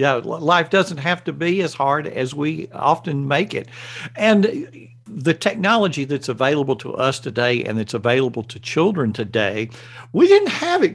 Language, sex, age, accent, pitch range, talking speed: English, male, 60-79, American, 125-185 Hz, 180 wpm